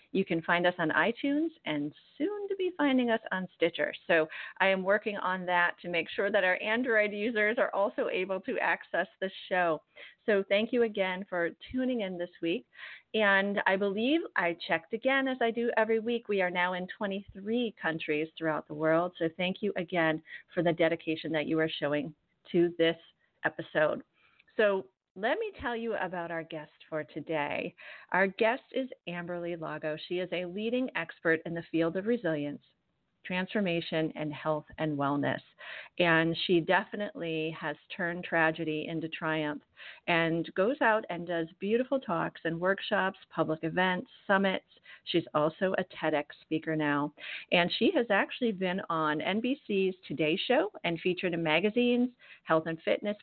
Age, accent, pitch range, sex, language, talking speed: 40-59, American, 160-210 Hz, female, English, 170 wpm